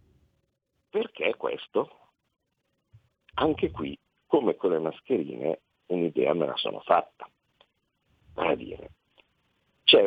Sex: male